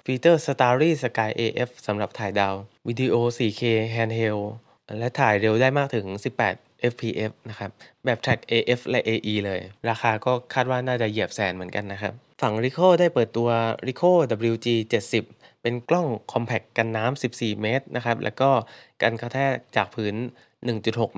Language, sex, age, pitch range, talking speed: English, male, 20-39, 110-130 Hz, 70 wpm